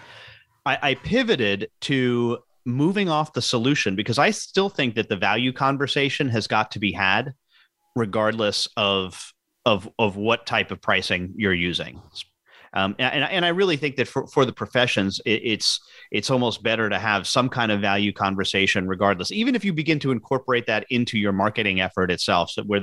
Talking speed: 180 wpm